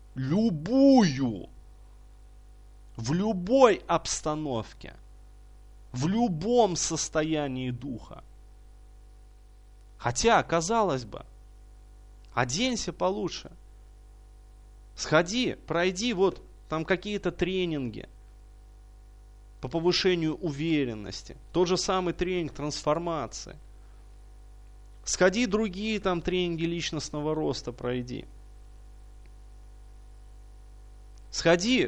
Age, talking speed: 30-49, 65 wpm